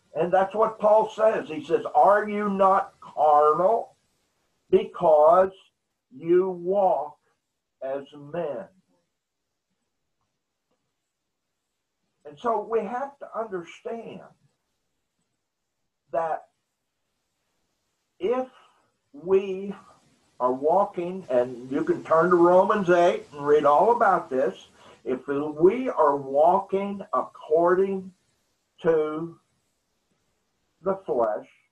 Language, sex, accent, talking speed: English, male, American, 90 wpm